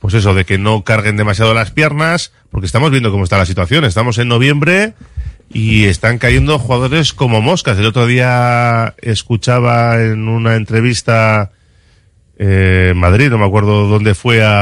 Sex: male